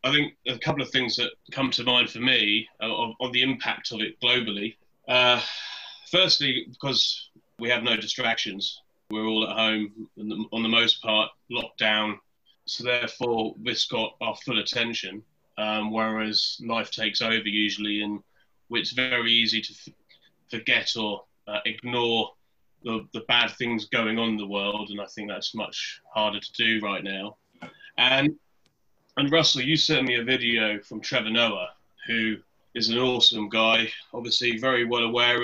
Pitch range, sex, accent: 110-125 Hz, male, British